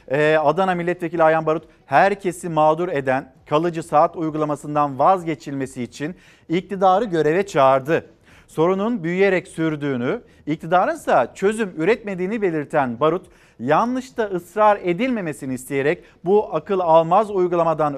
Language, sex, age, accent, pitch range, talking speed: Turkish, male, 50-69, native, 150-185 Hz, 105 wpm